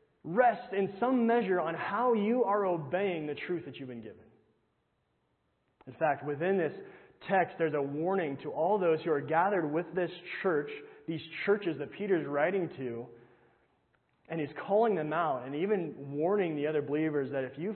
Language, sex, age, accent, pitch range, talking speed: English, male, 30-49, American, 130-180 Hz, 175 wpm